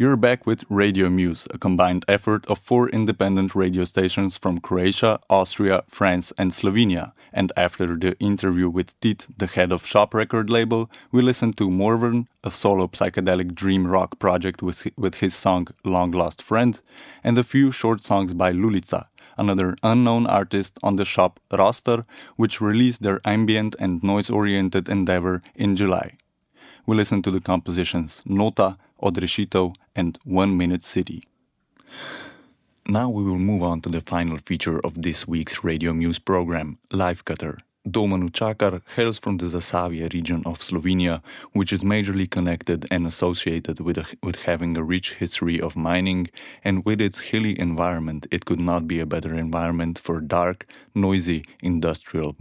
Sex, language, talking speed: male, French, 155 wpm